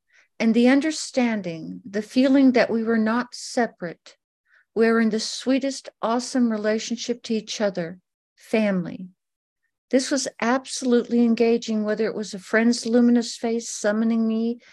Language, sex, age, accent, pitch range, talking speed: English, female, 60-79, American, 210-245 Hz, 140 wpm